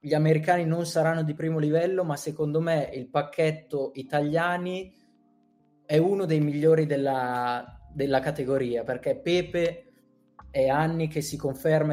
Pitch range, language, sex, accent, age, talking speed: 130-155 Hz, Italian, male, native, 20-39, 135 wpm